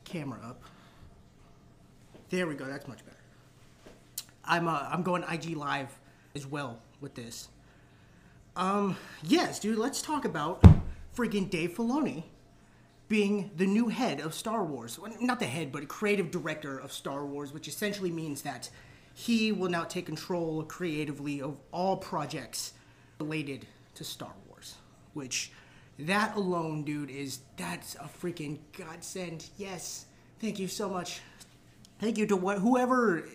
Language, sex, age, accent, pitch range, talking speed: English, male, 30-49, American, 140-195 Hz, 140 wpm